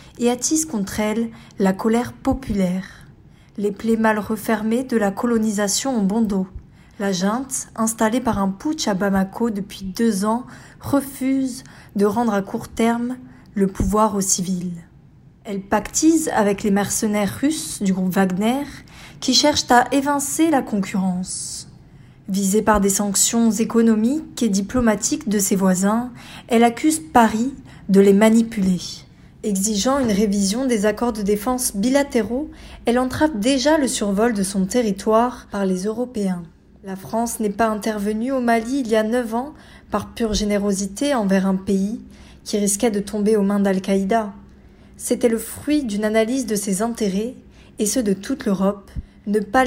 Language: French